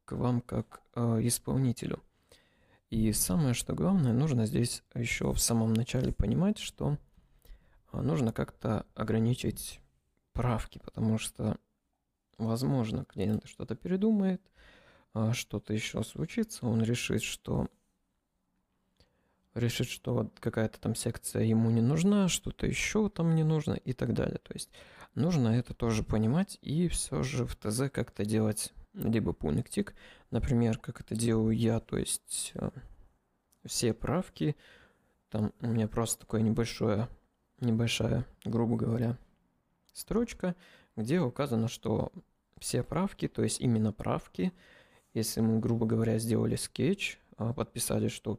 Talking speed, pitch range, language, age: 130 wpm, 110-125 Hz, Russian, 20-39